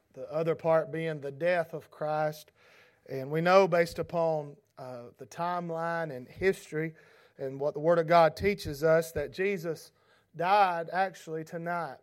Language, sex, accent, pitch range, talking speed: English, male, American, 145-175 Hz, 155 wpm